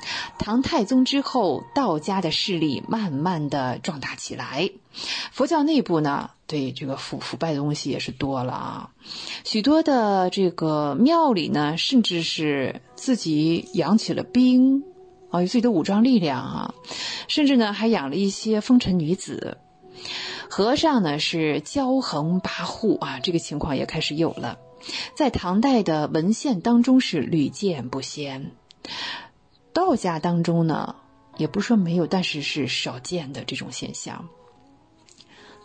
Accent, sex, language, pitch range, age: native, female, Chinese, 155-240 Hz, 30-49